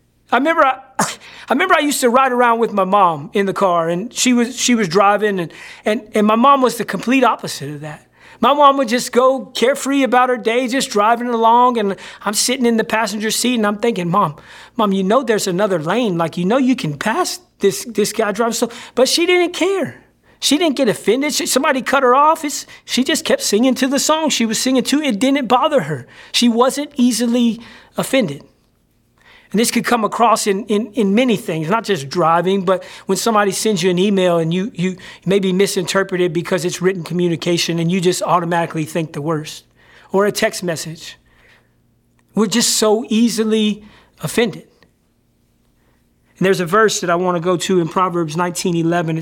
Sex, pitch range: male, 180-245 Hz